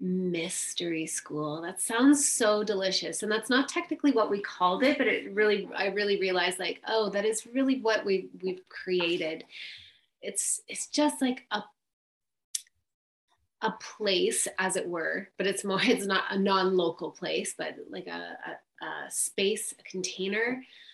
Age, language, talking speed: 30-49, English, 160 wpm